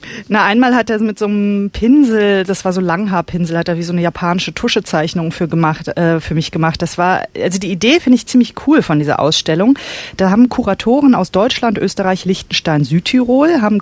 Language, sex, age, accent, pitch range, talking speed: German, female, 30-49, German, 170-230 Hz, 200 wpm